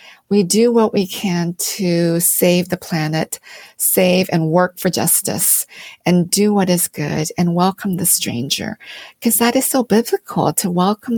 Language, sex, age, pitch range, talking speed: English, female, 50-69, 180-220 Hz, 160 wpm